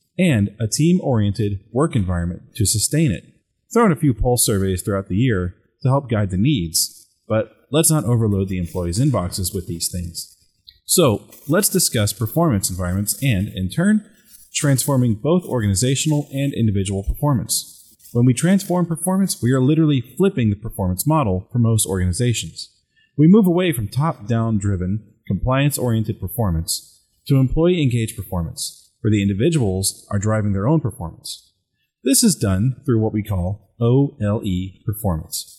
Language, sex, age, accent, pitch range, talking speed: English, male, 30-49, American, 100-140 Hz, 150 wpm